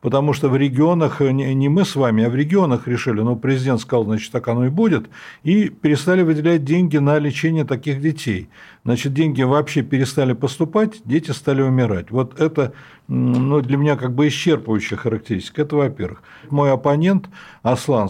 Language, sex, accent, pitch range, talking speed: Russian, male, native, 125-160 Hz, 165 wpm